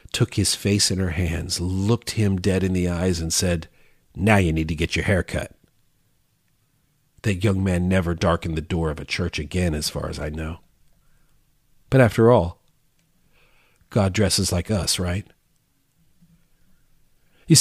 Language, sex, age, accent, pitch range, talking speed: English, male, 40-59, American, 100-160 Hz, 160 wpm